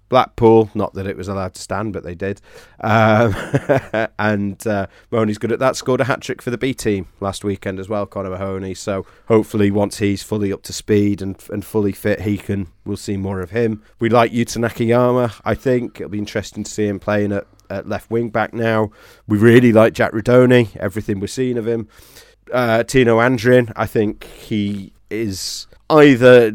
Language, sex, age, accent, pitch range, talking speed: English, male, 30-49, British, 100-115 Hz, 195 wpm